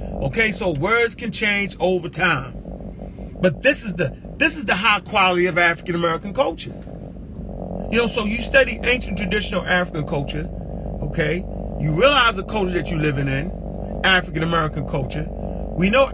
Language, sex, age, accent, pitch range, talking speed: English, male, 40-59, American, 165-205 Hz, 155 wpm